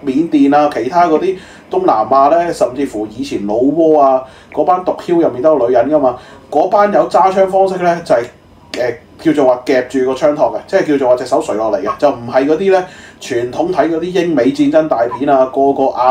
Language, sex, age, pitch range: Chinese, male, 30-49, 135-200 Hz